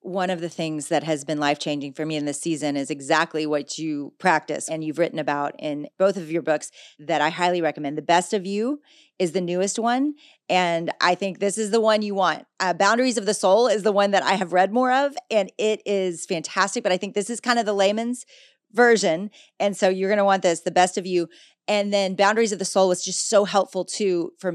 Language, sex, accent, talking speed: English, female, American, 240 wpm